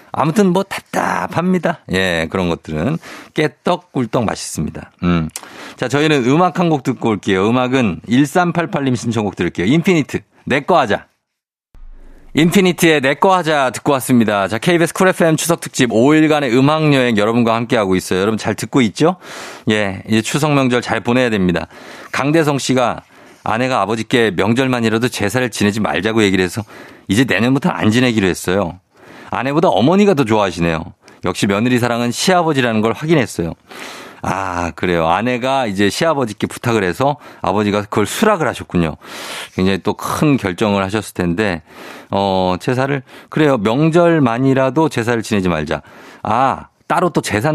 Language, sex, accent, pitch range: Korean, male, native, 100-145 Hz